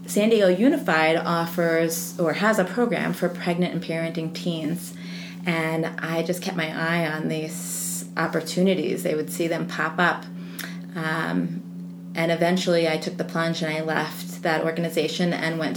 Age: 30-49